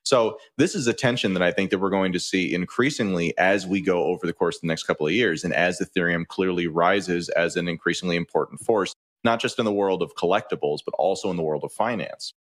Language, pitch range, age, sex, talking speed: English, 85-105 Hz, 30-49, male, 240 wpm